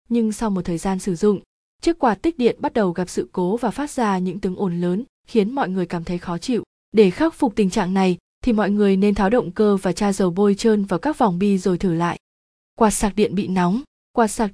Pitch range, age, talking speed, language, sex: 185-225 Hz, 20-39, 255 wpm, Vietnamese, female